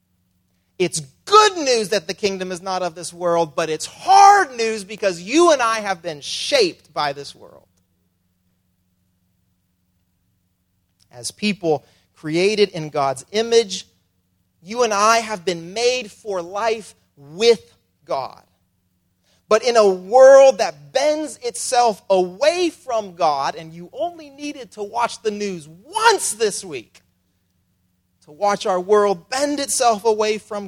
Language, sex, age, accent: English, male, 30-49, American